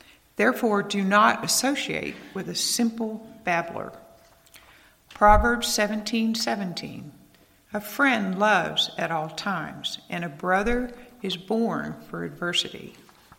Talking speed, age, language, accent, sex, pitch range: 110 wpm, 60-79, English, American, female, 180-230 Hz